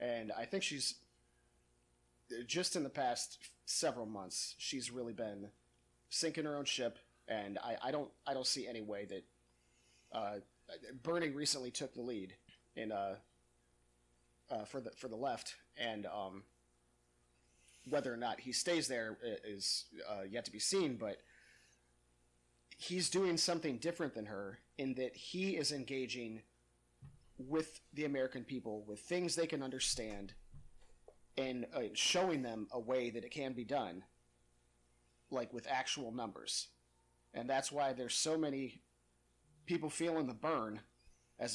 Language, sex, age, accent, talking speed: English, male, 30-49, American, 145 wpm